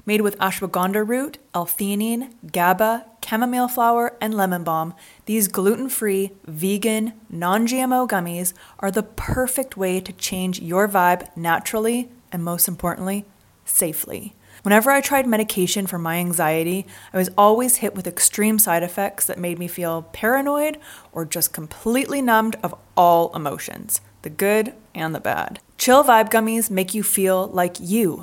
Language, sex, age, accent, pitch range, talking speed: English, female, 20-39, American, 180-225 Hz, 145 wpm